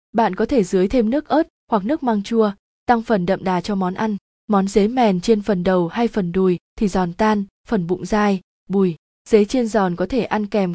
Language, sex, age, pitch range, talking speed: Vietnamese, female, 20-39, 185-230 Hz, 230 wpm